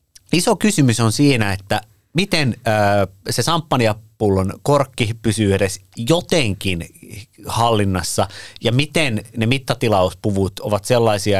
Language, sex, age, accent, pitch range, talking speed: Finnish, male, 30-49, native, 105-130 Hz, 100 wpm